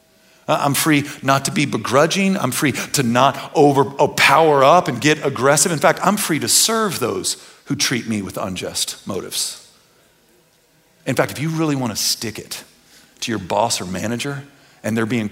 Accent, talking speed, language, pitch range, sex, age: American, 180 wpm, English, 120-175 Hz, male, 40-59